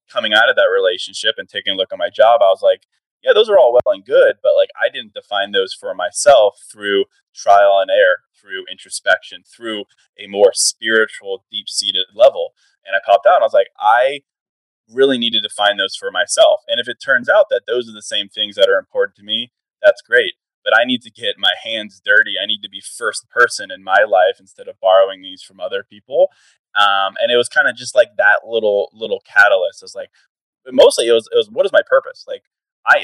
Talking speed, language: 230 wpm, English